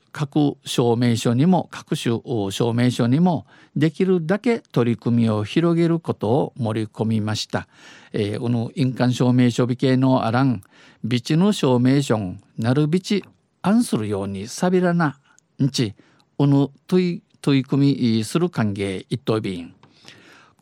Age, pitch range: 50-69, 120-155 Hz